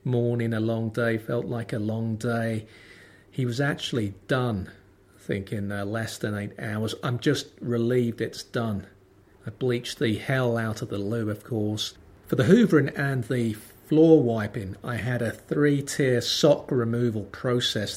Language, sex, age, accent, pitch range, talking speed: English, male, 40-59, British, 100-125 Hz, 155 wpm